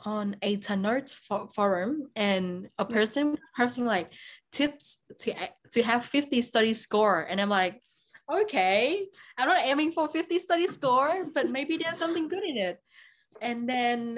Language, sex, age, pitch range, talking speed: English, female, 20-39, 195-250 Hz, 150 wpm